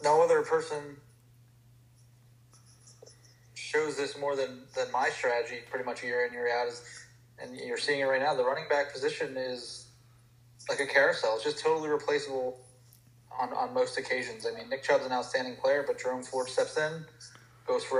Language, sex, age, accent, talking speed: English, male, 20-39, American, 175 wpm